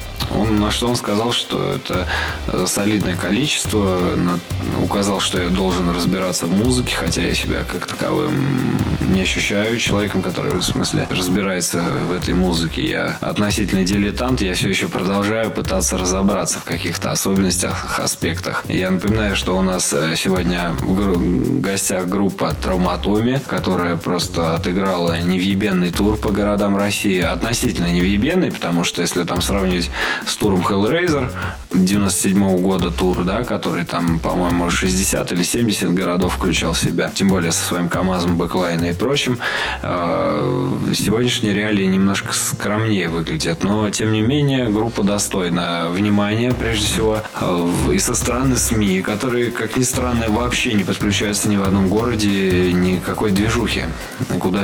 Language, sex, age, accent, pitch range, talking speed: Russian, male, 20-39, native, 85-105 Hz, 140 wpm